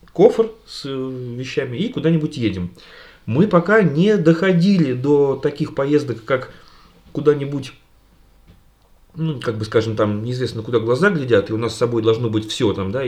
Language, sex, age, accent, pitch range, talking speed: Russian, male, 30-49, native, 110-155 Hz, 155 wpm